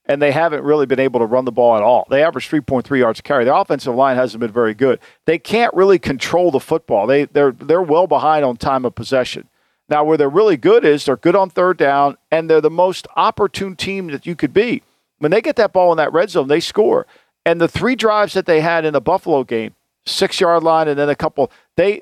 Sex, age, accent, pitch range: male, 50-69, American, 140-180 Hz